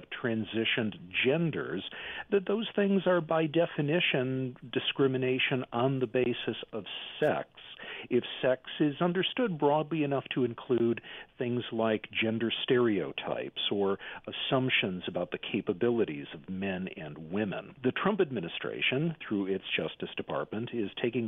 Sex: male